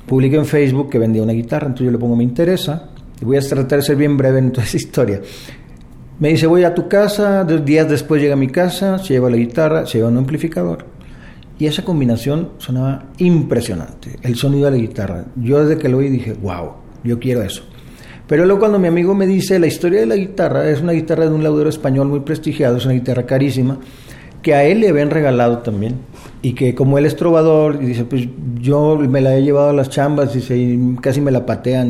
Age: 40-59